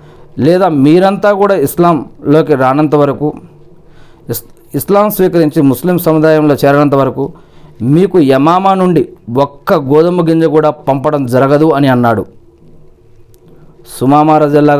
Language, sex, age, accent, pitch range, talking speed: Telugu, male, 40-59, native, 130-160 Hz, 100 wpm